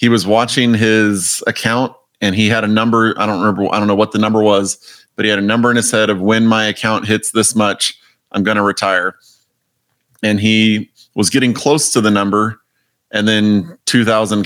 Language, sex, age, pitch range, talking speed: English, male, 30-49, 100-115 Hz, 210 wpm